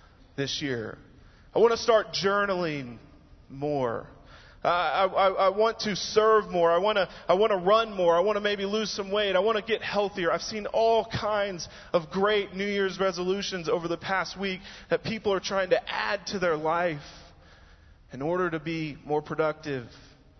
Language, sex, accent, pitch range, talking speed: English, male, American, 135-200 Hz, 190 wpm